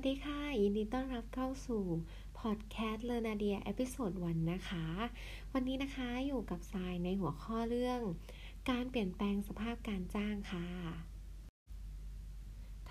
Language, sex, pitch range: Thai, female, 180-235 Hz